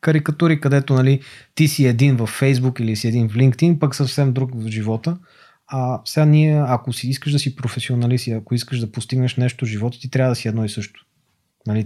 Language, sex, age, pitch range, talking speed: Bulgarian, male, 30-49, 115-150 Hz, 215 wpm